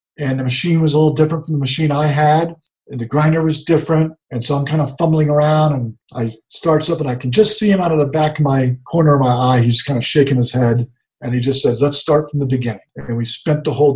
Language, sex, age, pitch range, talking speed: English, male, 50-69, 125-155 Hz, 270 wpm